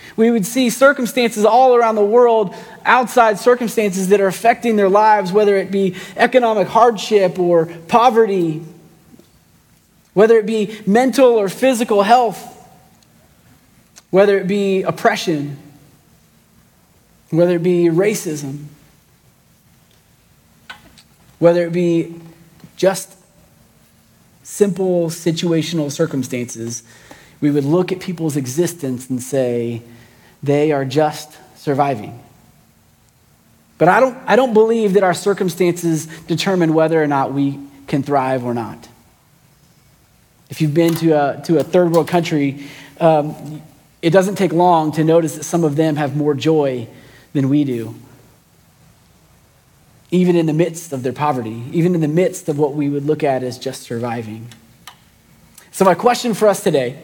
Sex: male